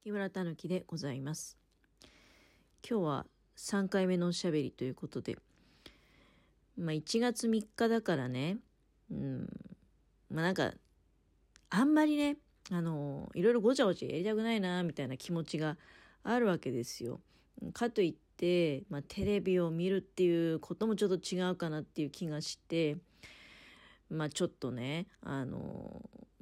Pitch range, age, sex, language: 145-215 Hz, 40-59, female, Japanese